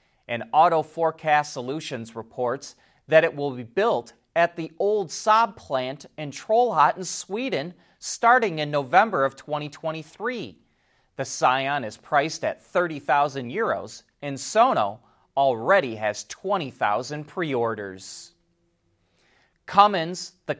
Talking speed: 115 wpm